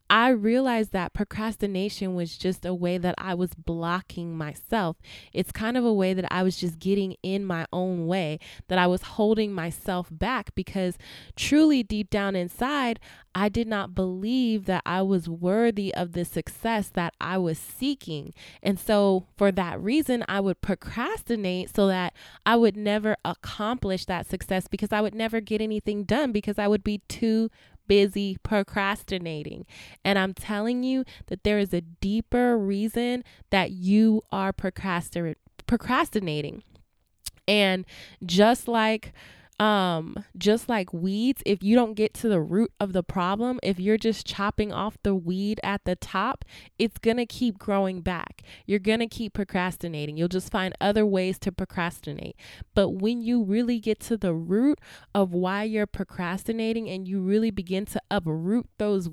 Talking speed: 165 wpm